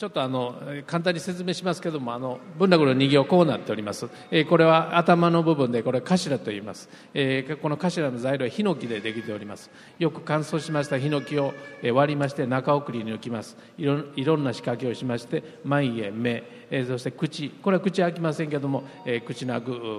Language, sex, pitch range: Japanese, male, 120-160 Hz